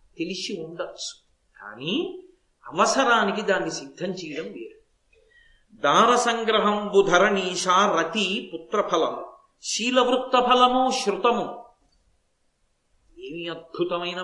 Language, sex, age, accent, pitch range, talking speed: Telugu, male, 50-69, native, 185-245 Hz, 65 wpm